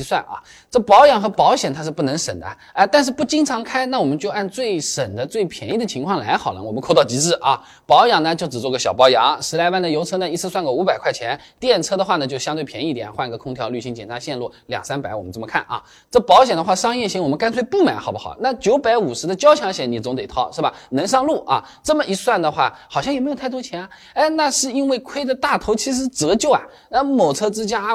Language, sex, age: Chinese, male, 20-39